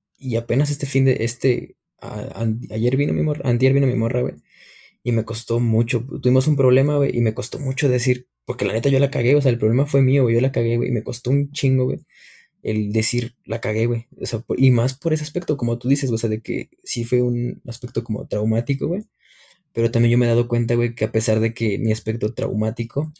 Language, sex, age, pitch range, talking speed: Spanish, male, 20-39, 115-130 Hz, 245 wpm